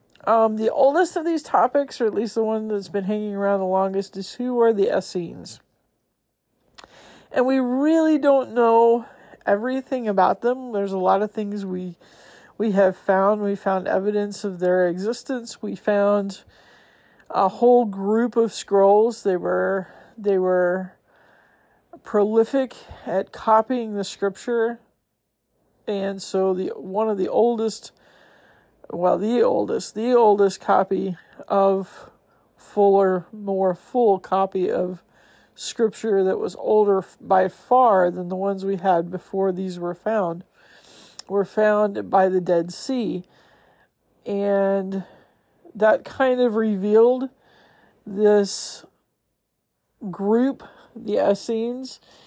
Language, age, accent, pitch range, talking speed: English, 50-69, American, 190-230 Hz, 125 wpm